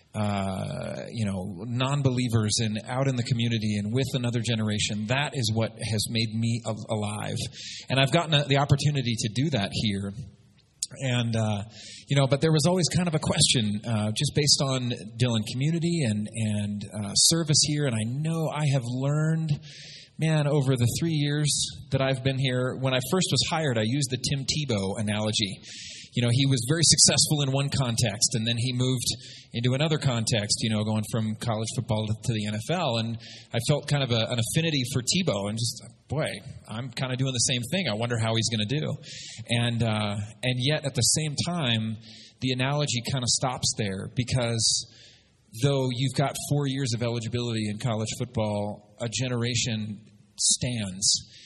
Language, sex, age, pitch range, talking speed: English, male, 30-49, 110-140 Hz, 185 wpm